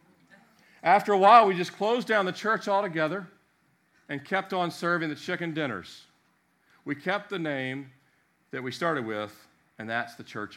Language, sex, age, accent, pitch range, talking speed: English, male, 50-69, American, 130-175 Hz, 165 wpm